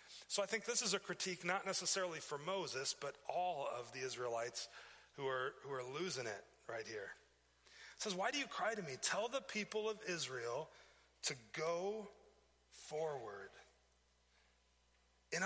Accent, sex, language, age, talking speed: American, male, English, 40-59, 155 wpm